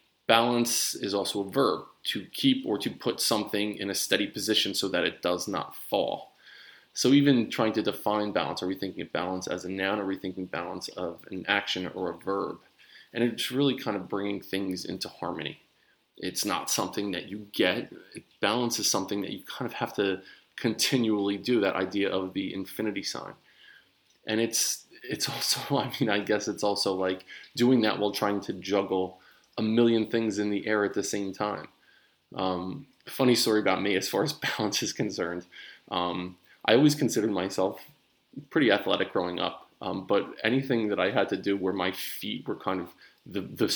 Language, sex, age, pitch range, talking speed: English, male, 20-39, 95-110 Hz, 190 wpm